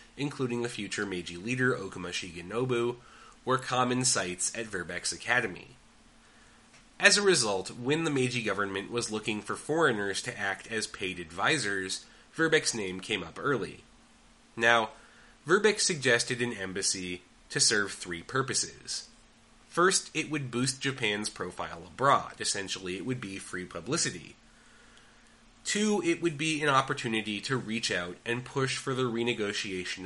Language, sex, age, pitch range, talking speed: English, male, 30-49, 95-130 Hz, 140 wpm